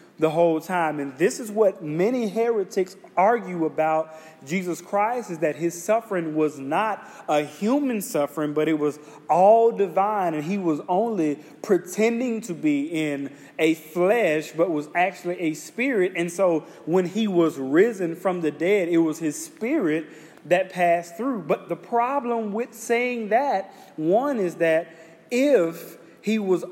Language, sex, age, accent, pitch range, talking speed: English, male, 30-49, American, 165-225 Hz, 155 wpm